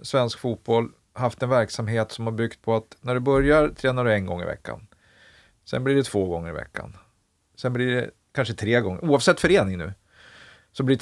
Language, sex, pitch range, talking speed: Swedish, male, 105-130 Hz, 210 wpm